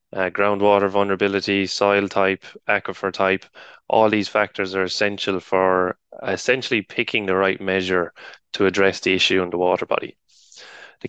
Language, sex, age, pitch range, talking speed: English, male, 20-39, 95-105 Hz, 145 wpm